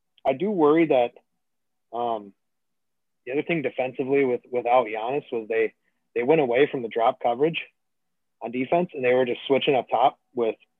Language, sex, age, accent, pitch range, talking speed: English, male, 30-49, American, 115-140 Hz, 170 wpm